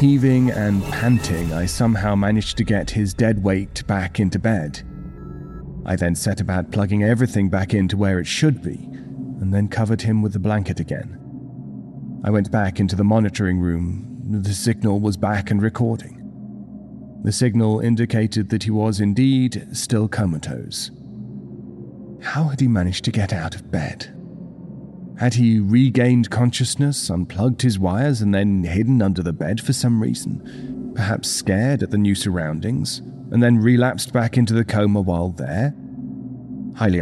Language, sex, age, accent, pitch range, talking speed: English, male, 40-59, British, 95-120 Hz, 155 wpm